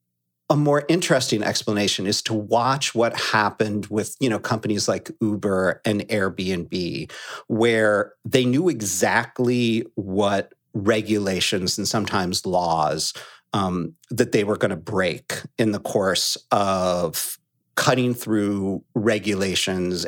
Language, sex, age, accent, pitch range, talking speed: English, male, 40-59, American, 100-130 Hz, 120 wpm